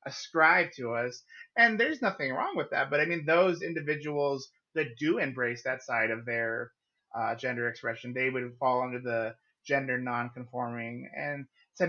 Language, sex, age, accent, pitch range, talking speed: English, male, 30-49, American, 125-160 Hz, 165 wpm